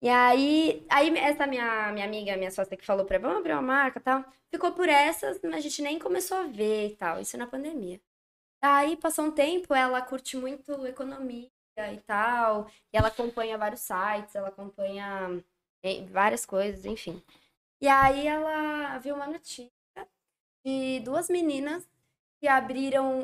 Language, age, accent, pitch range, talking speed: Portuguese, 10-29, Brazilian, 225-295 Hz, 170 wpm